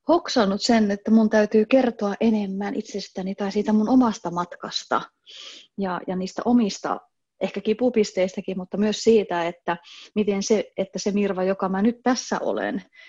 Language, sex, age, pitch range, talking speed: Finnish, female, 30-49, 190-230 Hz, 150 wpm